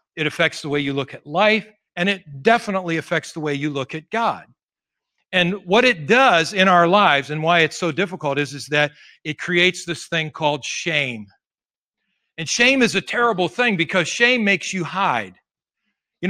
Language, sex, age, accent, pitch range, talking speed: English, male, 50-69, American, 155-190 Hz, 190 wpm